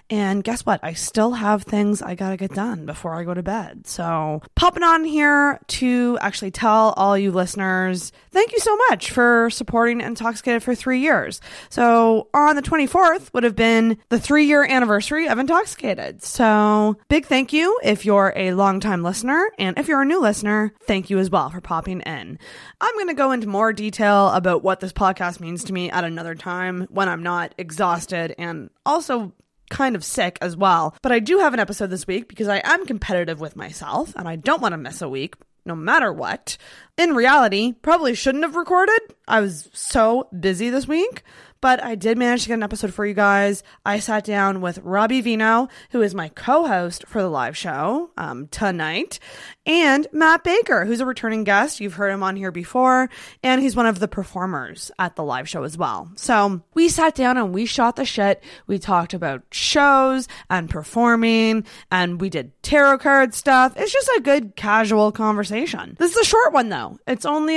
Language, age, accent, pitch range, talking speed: English, 20-39, American, 190-265 Hz, 195 wpm